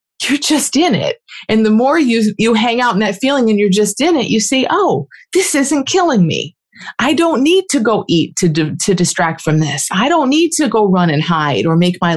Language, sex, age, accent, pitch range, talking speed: English, female, 30-49, American, 180-230 Hz, 235 wpm